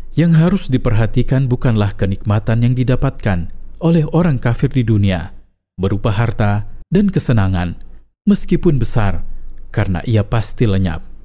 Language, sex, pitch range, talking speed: Indonesian, male, 100-130 Hz, 115 wpm